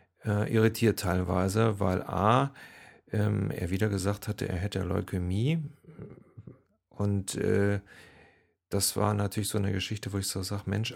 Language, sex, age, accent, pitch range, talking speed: German, male, 40-59, German, 90-105 Hz, 135 wpm